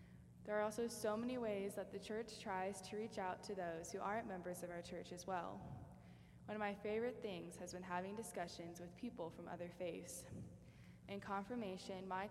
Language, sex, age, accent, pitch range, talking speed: English, female, 10-29, American, 175-210 Hz, 195 wpm